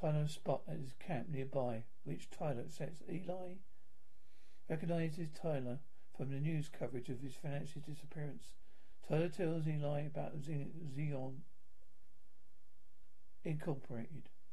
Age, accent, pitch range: 50-69, British, 135-160 Hz